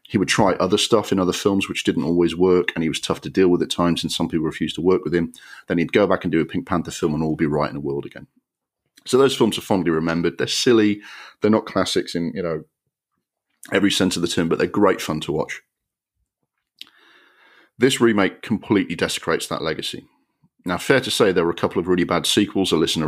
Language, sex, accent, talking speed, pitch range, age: English, male, British, 240 wpm, 80-95 Hz, 40-59